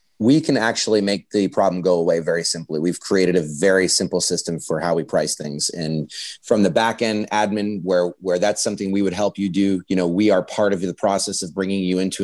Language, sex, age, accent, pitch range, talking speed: English, male, 30-49, American, 95-120 Hz, 235 wpm